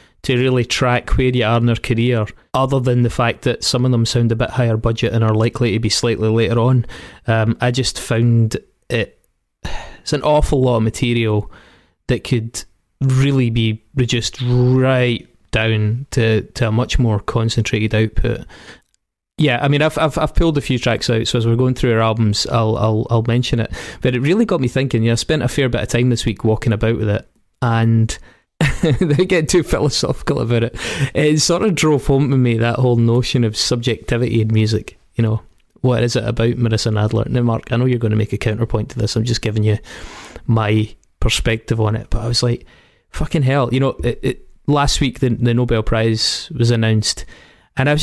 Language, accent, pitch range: English, British, 110-125 Hz